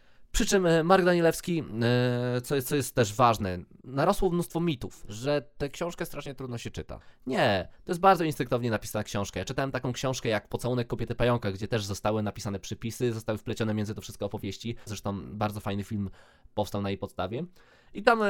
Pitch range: 105-130 Hz